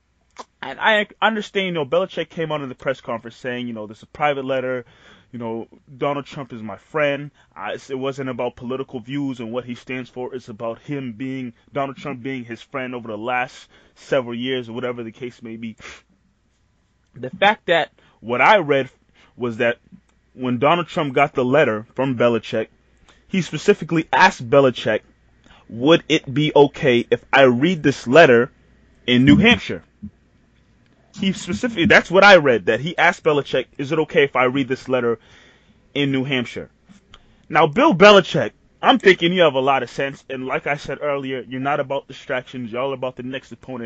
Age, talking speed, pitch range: 20-39, 185 wpm, 125-160 Hz